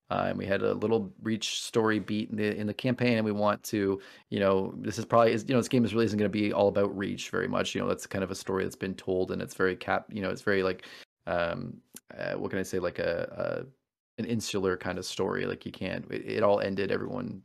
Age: 20-39